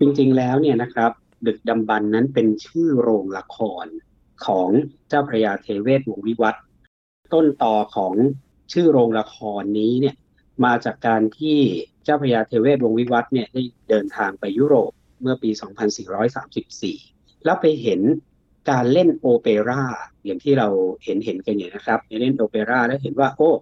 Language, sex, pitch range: Thai, male, 115-150 Hz